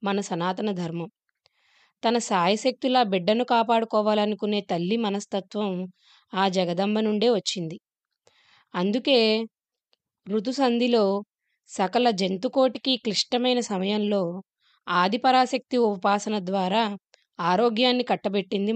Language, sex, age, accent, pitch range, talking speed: Telugu, female, 20-39, native, 195-240 Hz, 75 wpm